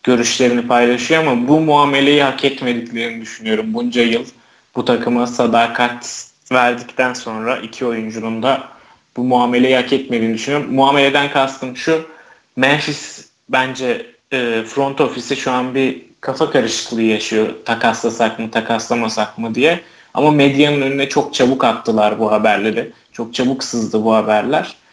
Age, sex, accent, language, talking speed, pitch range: 30-49, male, native, Turkish, 130 wpm, 115-140 Hz